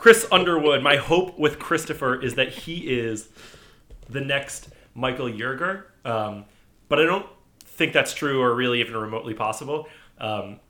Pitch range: 105-130 Hz